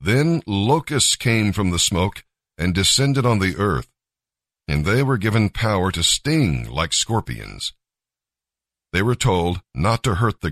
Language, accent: English, American